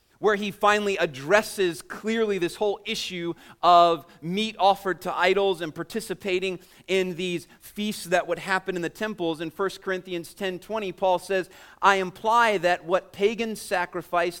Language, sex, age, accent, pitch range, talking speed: English, male, 30-49, American, 155-205 Hz, 150 wpm